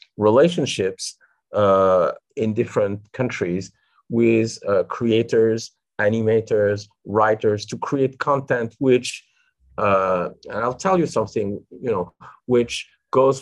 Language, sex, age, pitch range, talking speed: English, male, 50-69, 105-155 Hz, 105 wpm